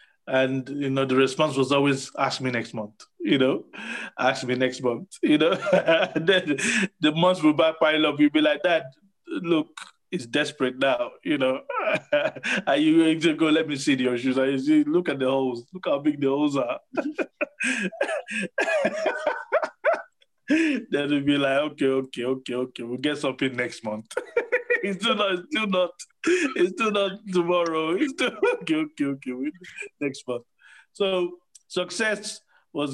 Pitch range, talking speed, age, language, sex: 130-215 Hz, 160 wpm, 20-39, English, male